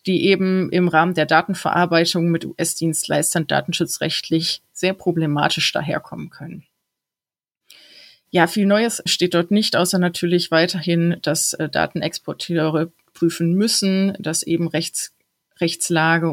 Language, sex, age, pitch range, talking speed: German, female, 30-49, 165-185 Hz, 115 wpm